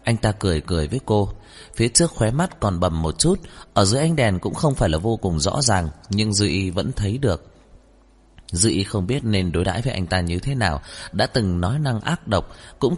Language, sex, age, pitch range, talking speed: Vietnamese, male, 20-39, 90-120 Hz, 230 wpm